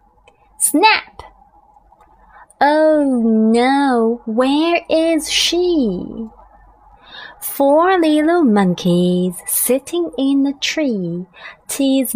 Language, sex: Chinese, female